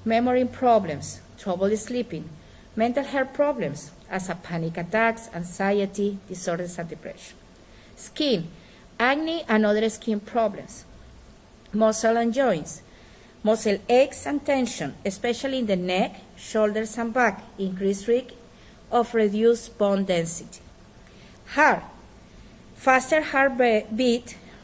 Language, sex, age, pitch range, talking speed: English, female, 50-69, 200-250 Hz, 105 wpm